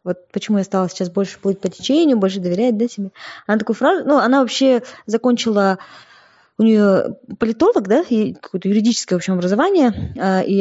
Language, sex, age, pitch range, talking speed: Russian, female, 20-39, 185-230 Hz, 175 wpm